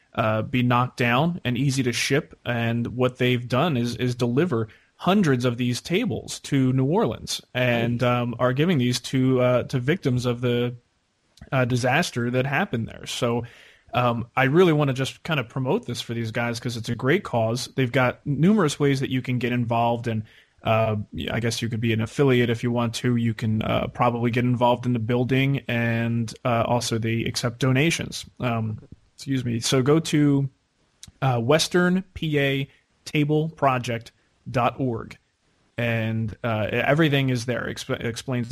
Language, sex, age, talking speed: English, male, 30-49, 180 wpm